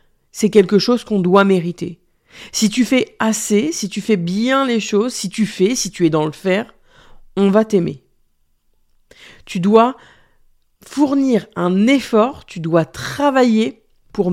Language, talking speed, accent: French, 155 wpm, French